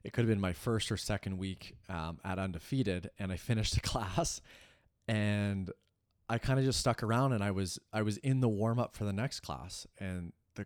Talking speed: 220 wpm